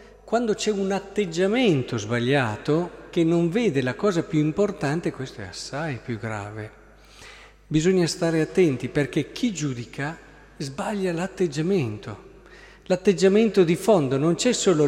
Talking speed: 125 wpm